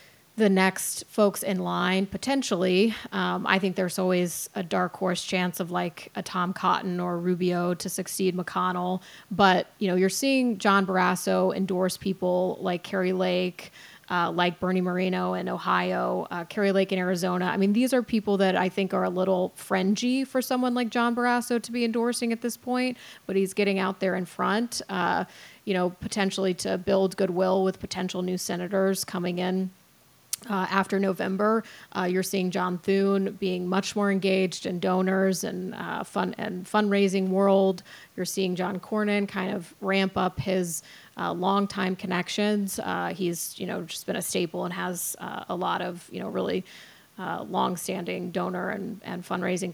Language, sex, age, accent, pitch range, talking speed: English, female, 30-49, American, 180-205 Hz, 175 wpm